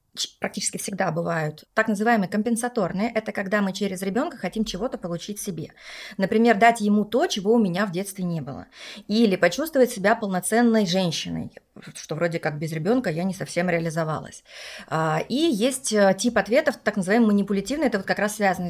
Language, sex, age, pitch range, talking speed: Russian, female, 30-49, 180-225 Hz, 165 wpm